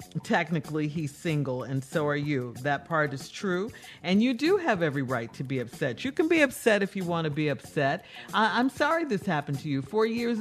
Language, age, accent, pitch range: English, 50-69, American, 150-220 Hz